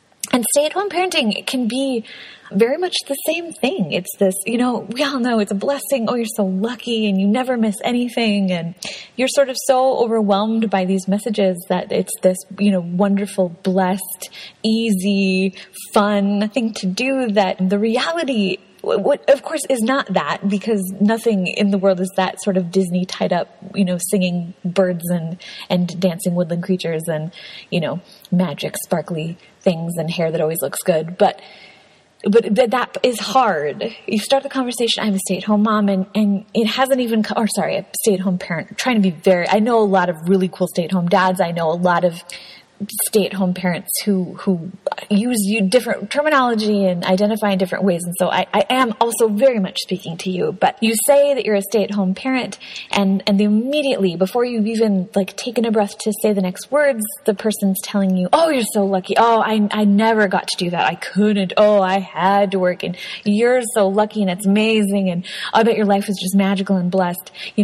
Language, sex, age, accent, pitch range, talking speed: English, female, 20-39, American, 190-230 Hz, 200 wpm